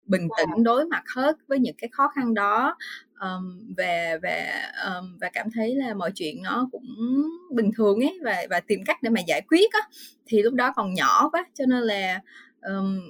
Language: Vietnamese